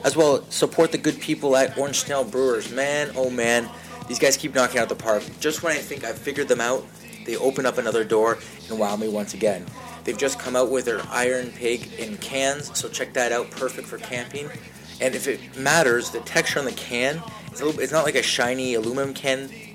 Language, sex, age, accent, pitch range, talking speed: English, male, 30-49, American, 115-135 Hz, 220 wpm